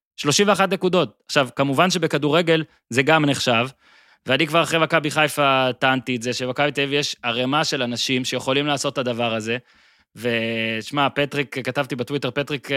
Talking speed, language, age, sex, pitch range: 150 wpm, Hebrew, 20-39, male, 130-175 Hz